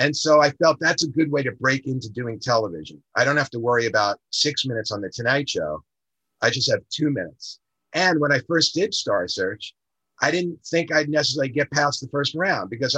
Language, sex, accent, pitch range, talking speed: English, male, American, 130-160 Hz, 220 wpm